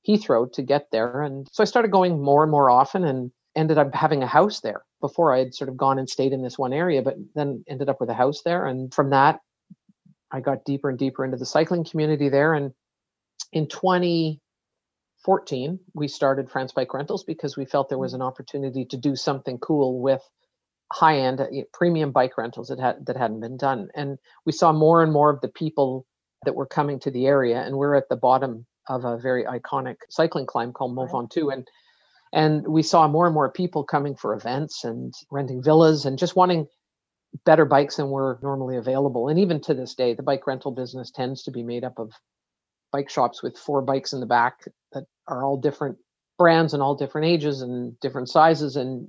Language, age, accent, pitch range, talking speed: English, 50-69, American, 130-155 Hz, 210 wpm